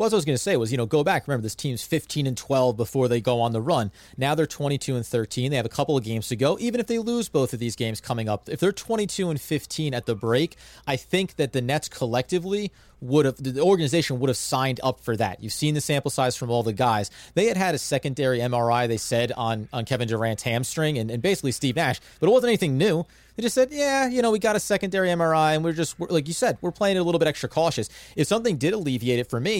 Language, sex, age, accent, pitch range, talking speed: English, male, 30-49, American, 125-165 Hz, 270 wpm